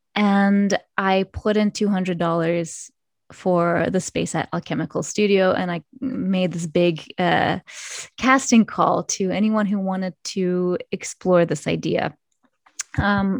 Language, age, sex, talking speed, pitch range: English, 20-39, female, 125 wpm, 175-210 Hz